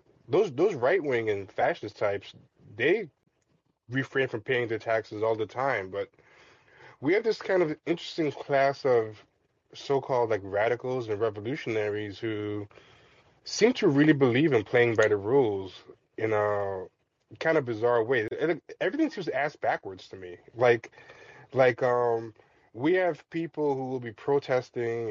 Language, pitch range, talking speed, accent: English, 105-140 Hz, 145 wpm, American